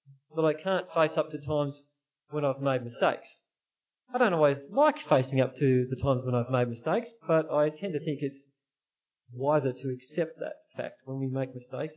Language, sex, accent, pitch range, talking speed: English, male, Australian, 135-180 Hz, 195 wpm